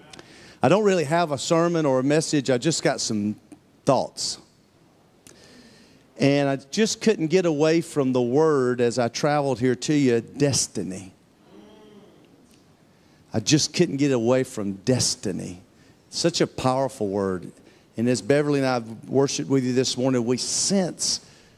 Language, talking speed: English, 150 wpm